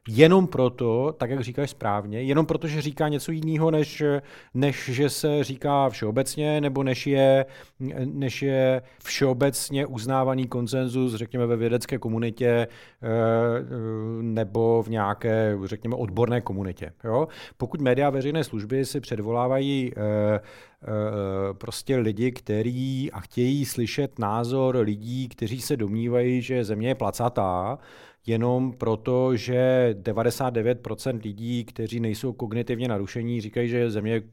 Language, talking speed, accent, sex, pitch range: Czech, 120 wpm, native, male, 110-130 Hz